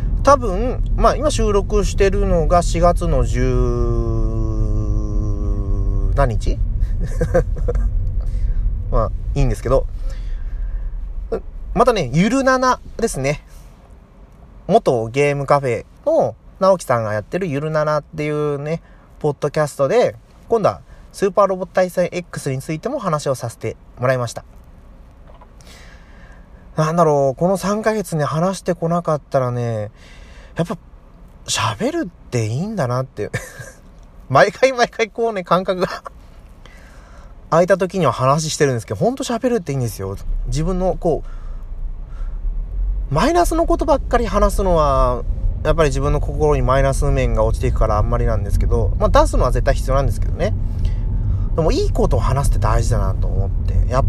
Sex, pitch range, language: male, 100-160 Hz, Japanese